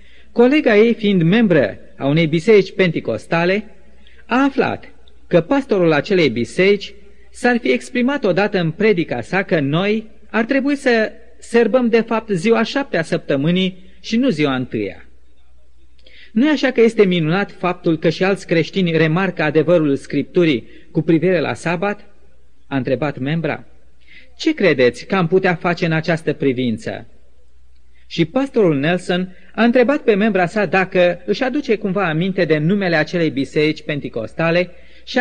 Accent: native